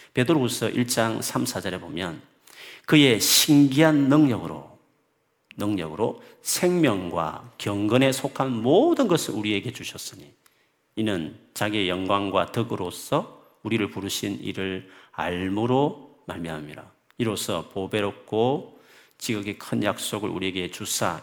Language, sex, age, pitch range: Korean, male, 40-59, 95-160 Hz